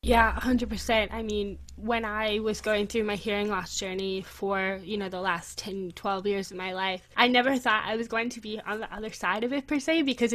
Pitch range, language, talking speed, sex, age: 195-230 Hz, English, 245 wpm, female, 10-29